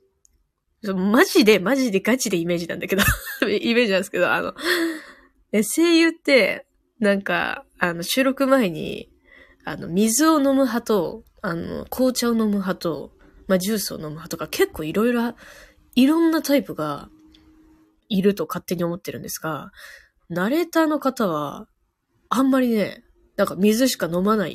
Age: 20-39